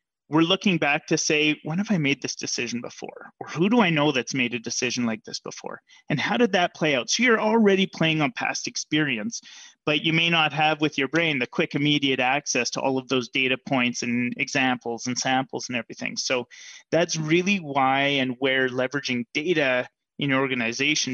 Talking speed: 205 wpm